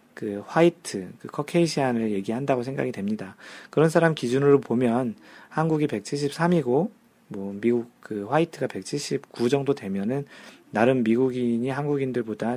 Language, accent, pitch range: Korean, native, 115-160 Hz